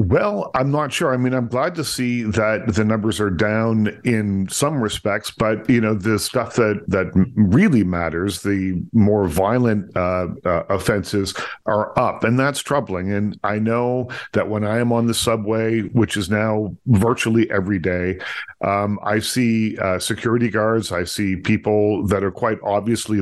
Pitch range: 100-115 Hz